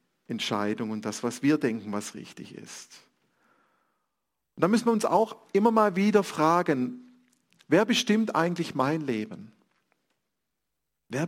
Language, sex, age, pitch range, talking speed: German, male, 40-59, 125-210 Hz, 130 wpm